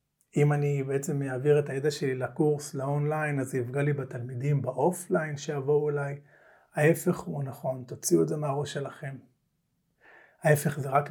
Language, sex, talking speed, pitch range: Hebrew, male, 155 wpm, 135-165 Hz